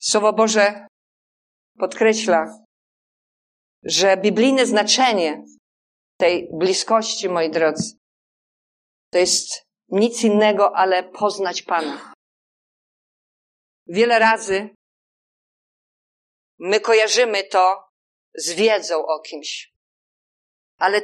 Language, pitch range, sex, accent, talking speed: Polish, 175-220 Hz, female, native, 75 wpm